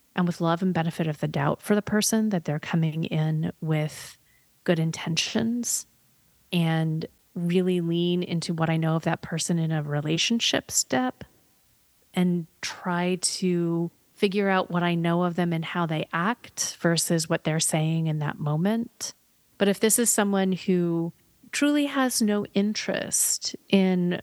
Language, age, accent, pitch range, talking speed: English, 30-49, American, 165-195 Hz, 160 wpm